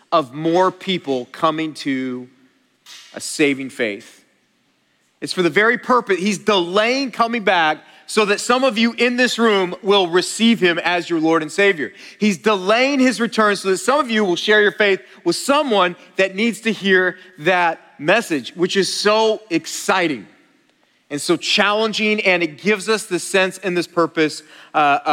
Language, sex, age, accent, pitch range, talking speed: English, male, 40-59, American, 170-215 Hz, 170 wpm